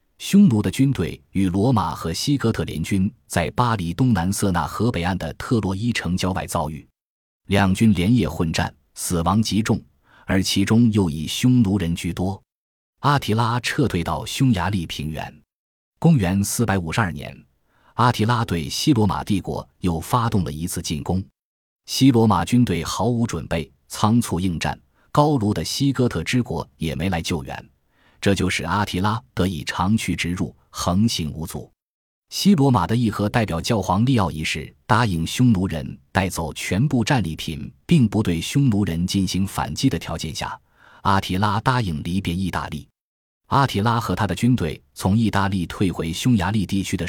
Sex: male